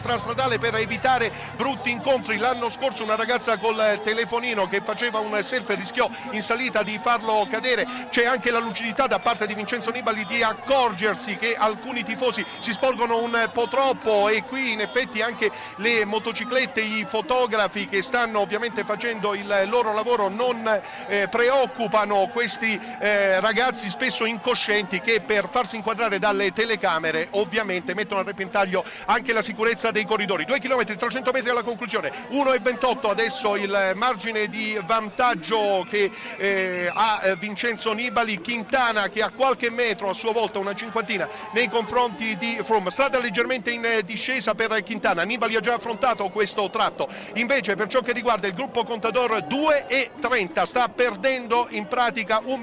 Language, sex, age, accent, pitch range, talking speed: Italian, male, 50-69, native, 210-245 Hz, 150 wpm